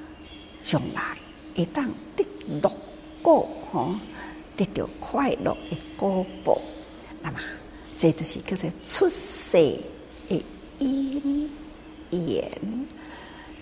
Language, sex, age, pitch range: Chinese, female, 60-79, 245-315 Hz